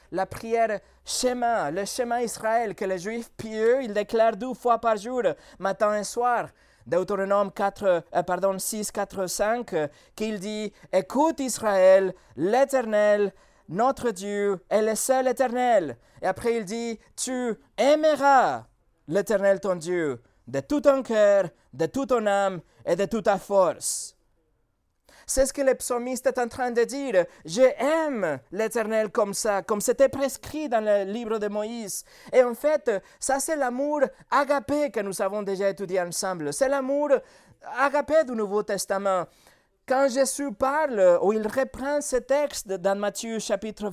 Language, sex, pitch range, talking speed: French, male, 195-260 Hz, 150 wpm